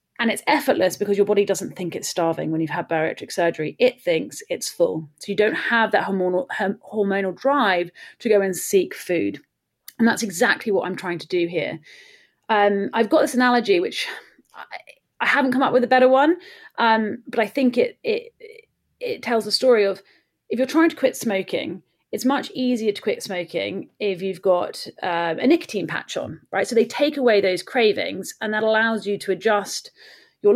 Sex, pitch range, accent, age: female, 195-275 Hz, British, 30-49